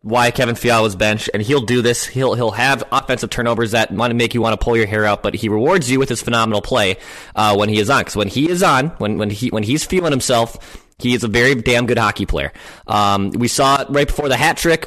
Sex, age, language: male, 20-39, English